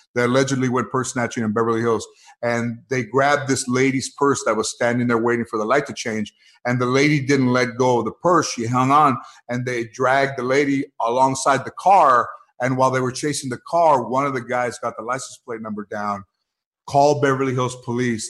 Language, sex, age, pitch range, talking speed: English, male, 50-69, 115-135 Hz, 215 wpm